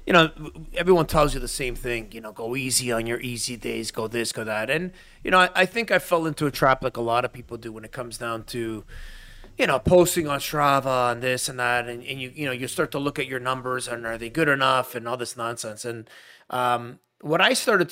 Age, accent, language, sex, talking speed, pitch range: 30-49, American, English, male, 260 wpm, 125-160 Hz